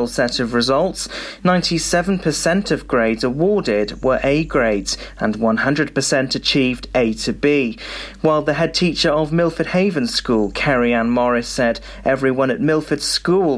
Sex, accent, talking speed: male, British, 135 wpm